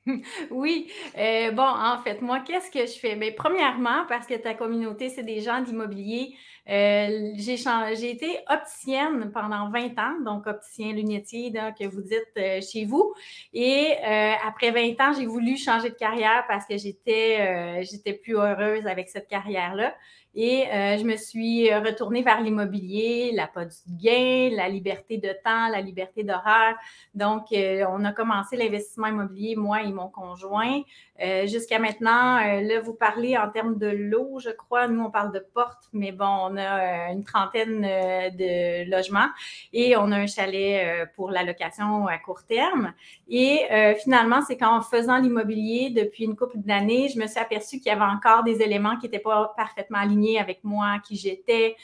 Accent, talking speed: Canadian, 180 wpm